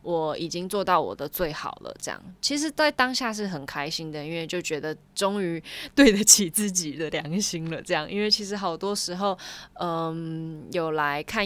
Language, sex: Chinese, female